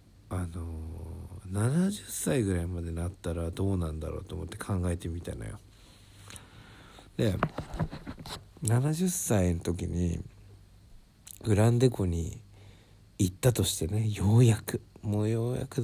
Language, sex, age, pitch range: Japanese, male, 60-79, 90-110 Hz